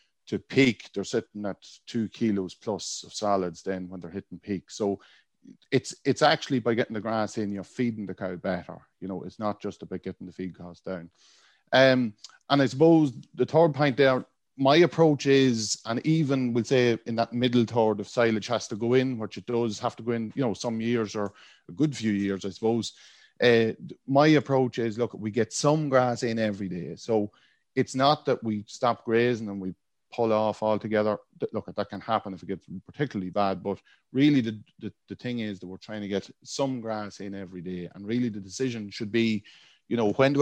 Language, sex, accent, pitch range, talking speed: English, male, Irish, 100-125 Hz, 215 wpm